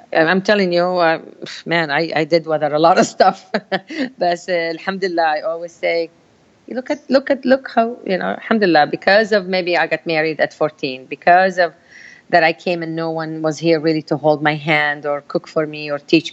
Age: 40-59